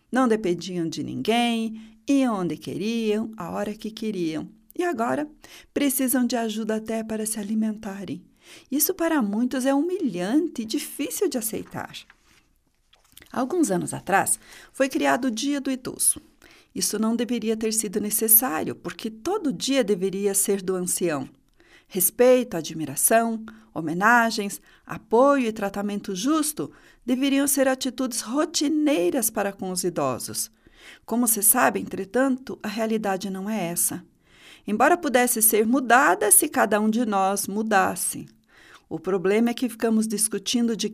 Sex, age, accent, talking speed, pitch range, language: female, 40-59, Brazilian, 135 wpm, 205-265 Hz, Portuguese